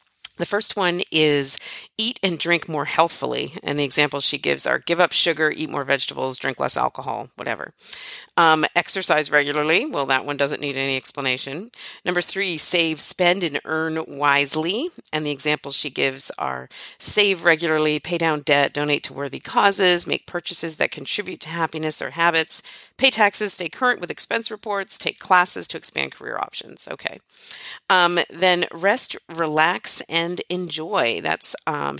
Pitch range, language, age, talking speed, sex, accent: 150-185 Hz, English, 40-59, 165 wpm, female, American